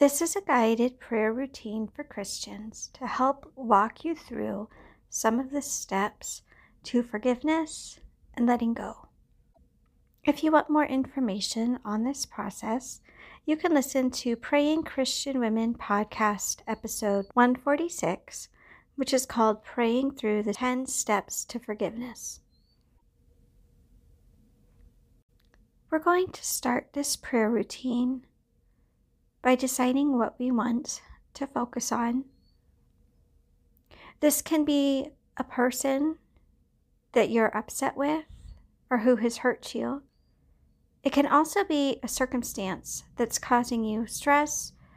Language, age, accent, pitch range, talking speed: English, 50-69, American, 220-275 Hz, 120 wpm